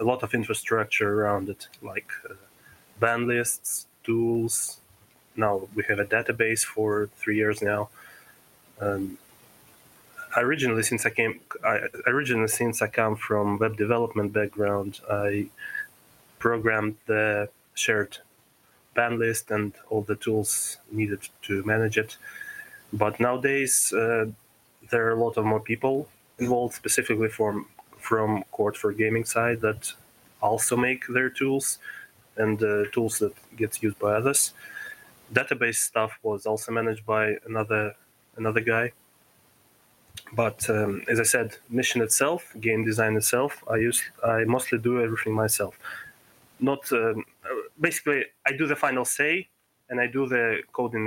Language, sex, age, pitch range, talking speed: English, male, 20-39, 105-120 Hz, 140 wpm